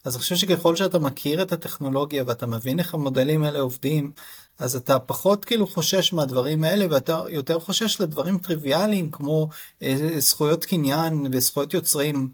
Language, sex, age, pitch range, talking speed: Hebrew, male, 30-49, 130-165 Hz, 150 wpm